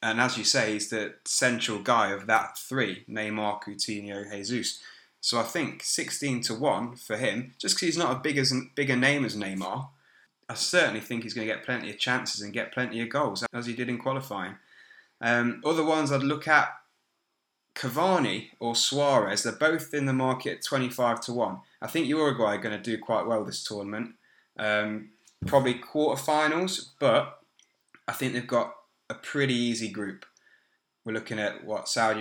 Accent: British